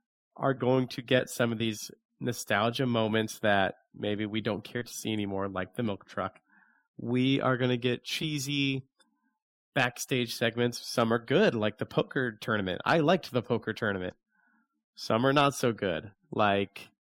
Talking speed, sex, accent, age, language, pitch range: 165 wpm, male, American, 30-49, English, 100-130 Hz